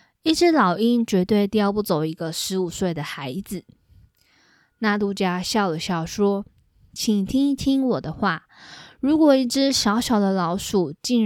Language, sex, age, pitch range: Chinese, female, 20-39, 185-250 Hz